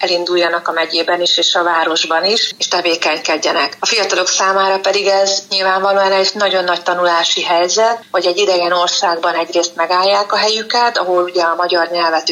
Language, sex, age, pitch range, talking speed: Hungarian, female, 30-49, 170-190 Hz, 165 wpm